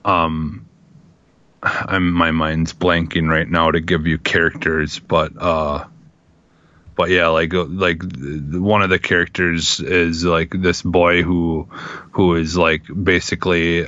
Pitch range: 80-90 Hz